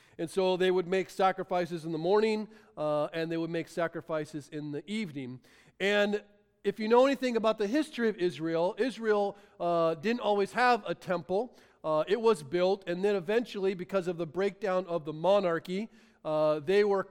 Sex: male